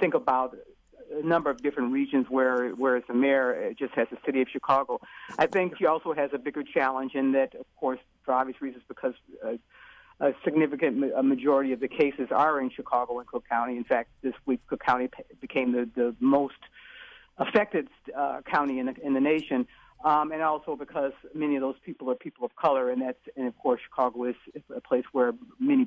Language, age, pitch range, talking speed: English, 50-69, 130-170 Hz, 205 wpm